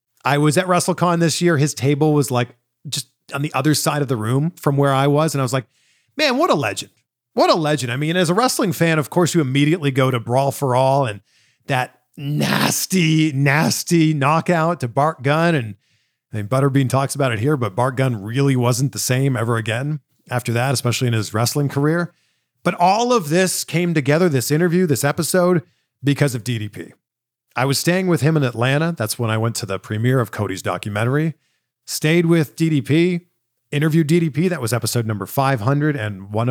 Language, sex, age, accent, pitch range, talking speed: English, male, 40-59, American, 120-155 Hz, 200 wpm